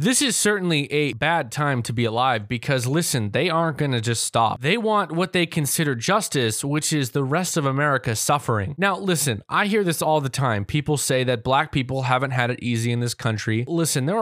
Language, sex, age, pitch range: English, male, 20-39, 125-180 Hz